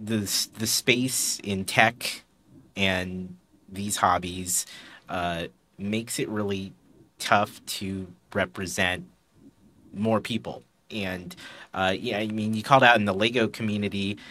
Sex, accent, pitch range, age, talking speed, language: male, American, 95-120 Hz, 30-49, 120 wpm, English